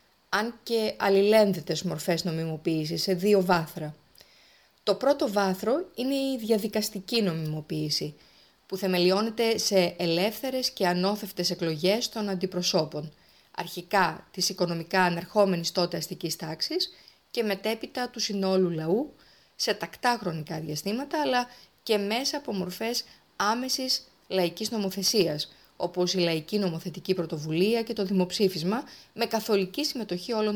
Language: Greek